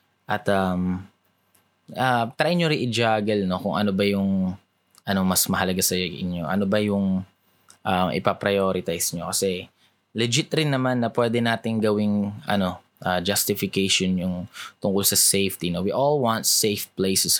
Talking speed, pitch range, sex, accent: 155 wpm, 95-115 Hz, male, native